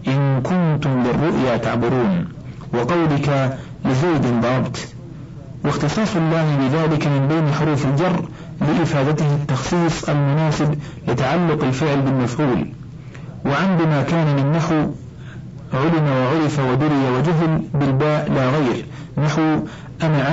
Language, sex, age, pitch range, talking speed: Arabic, male, 50-69, 135-155 Hz, 95 wpm